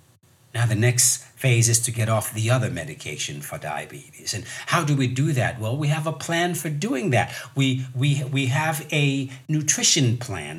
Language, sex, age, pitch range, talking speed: English, male, 60-79, 125-155 Hz, 185 wpm